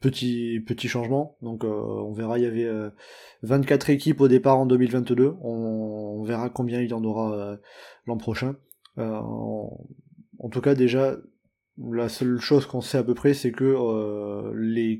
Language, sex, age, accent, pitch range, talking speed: French, male, 20-39, French, 120-145 Hz, 185 wpm